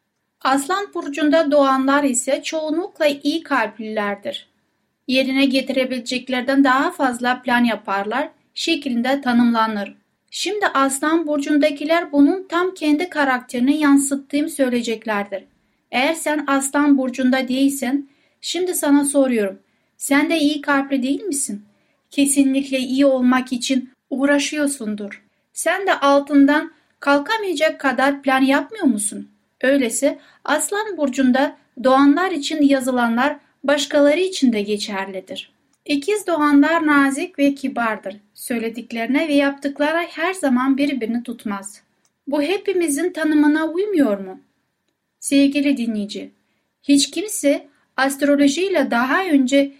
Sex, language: female, Turkish